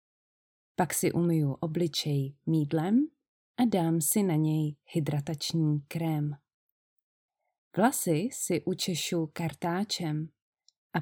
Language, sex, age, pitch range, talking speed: Czech, female, 20-39, 150-190 Hz, 95 wpm